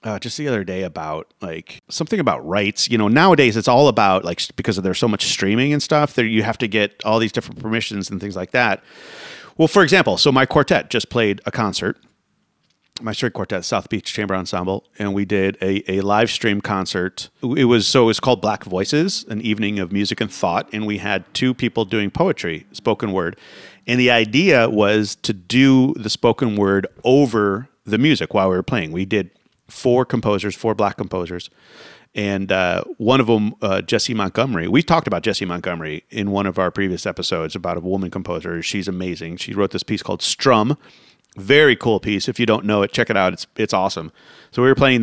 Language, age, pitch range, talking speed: English, 30-49, 95-120 Hz, 210 wpm